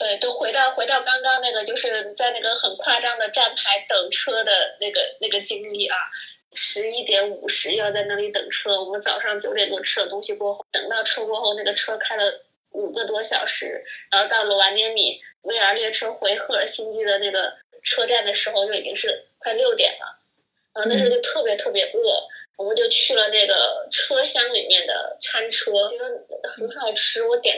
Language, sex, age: Chinese, female, 20-39